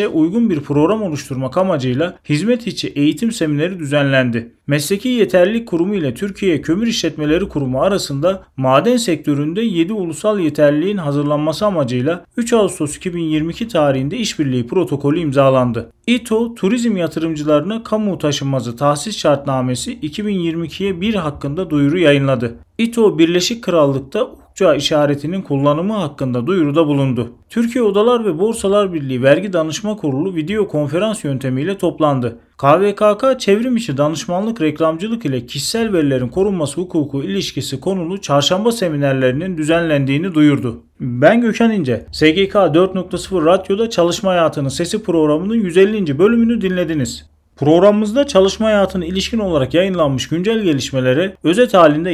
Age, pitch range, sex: 40-59, 140-195 Hz, male